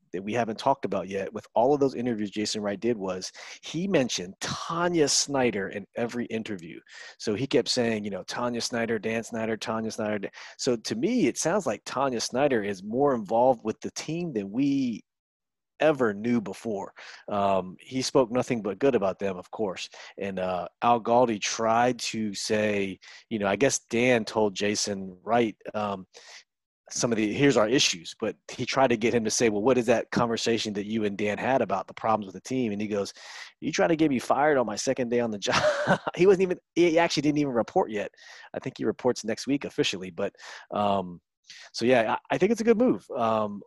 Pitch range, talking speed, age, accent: 105-130 Hz, 210 wpm, 30-49, American